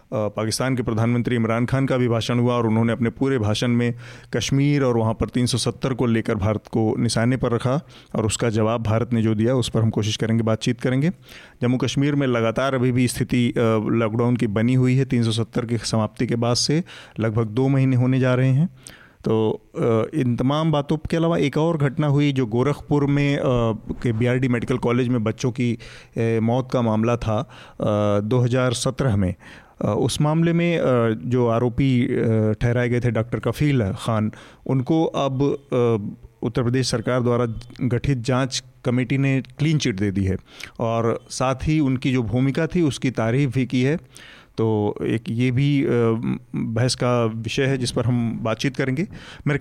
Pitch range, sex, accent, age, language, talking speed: 115-135 Hz, male, native, 30-49, Hindi, 175 wpm